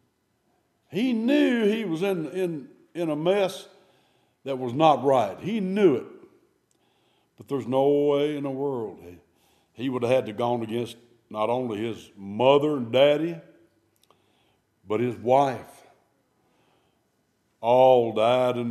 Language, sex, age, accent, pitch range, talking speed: English, male, 60-79, American, 120-170 Hz, 135 wpm